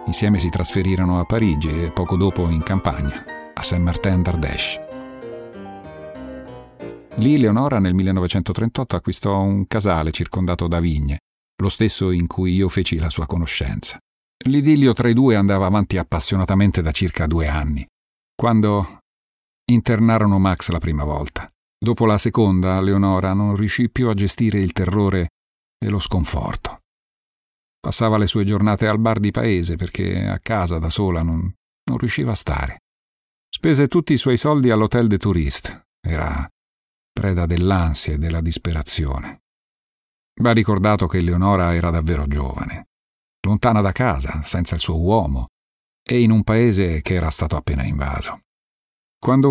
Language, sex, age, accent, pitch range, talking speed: Italian, male, 50-69, native, 85-105 Hz, 145 wpm